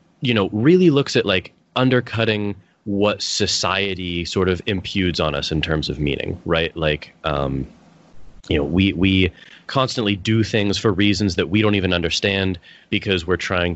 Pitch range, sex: 85-110 Hz, male